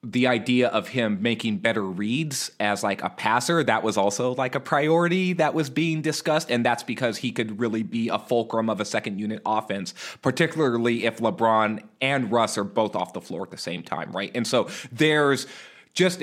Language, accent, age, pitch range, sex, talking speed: English, American, 30-49, 110-140 Hz, male, 200 wpm